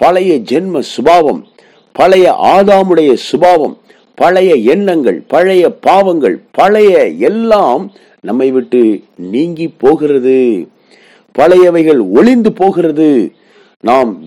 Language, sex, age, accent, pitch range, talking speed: Tamil, male, 50-69, native, 130-215 Hz, 85 wpm